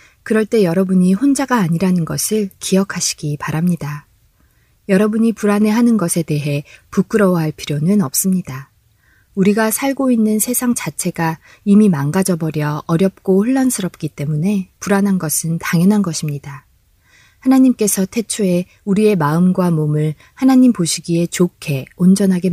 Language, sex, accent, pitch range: Korean, female, native, 155-210 Hz